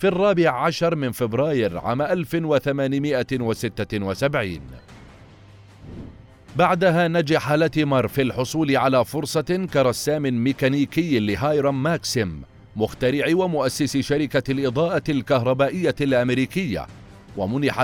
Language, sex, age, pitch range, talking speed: Arabic, male, 40-59, 115-155 Hz, 85 wpm